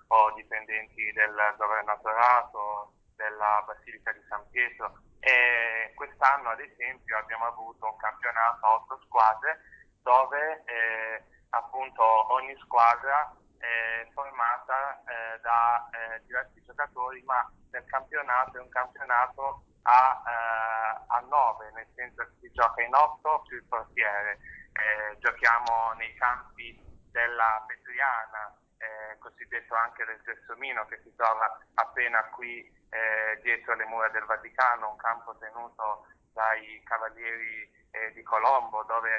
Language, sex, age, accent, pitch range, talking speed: Italian, male, 20-39, native, 110-120 Hz, 125 wpm